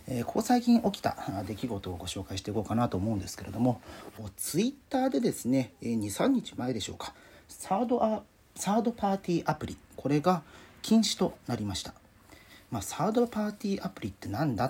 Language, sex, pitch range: Japanese, male, 100-170 Hz